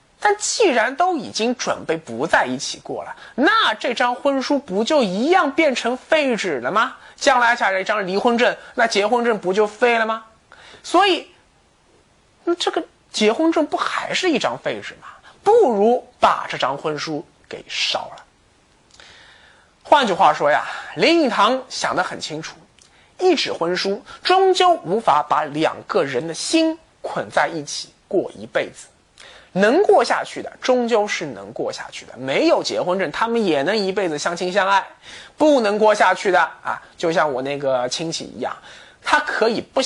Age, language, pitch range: 30-49, Chinese, 190-320 Hz